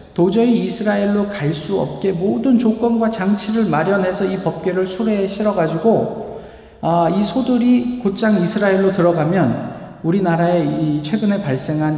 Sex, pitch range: male, 135-200 Hz